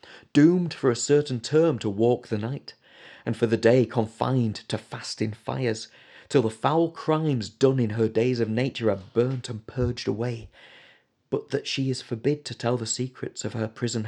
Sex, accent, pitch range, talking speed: male, British, 120-155 Hz, 190 wpm